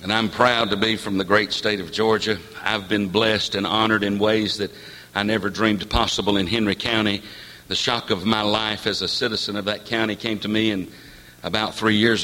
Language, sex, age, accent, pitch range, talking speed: English, male, 60-79, American, 95-120 Hz, 215 wpm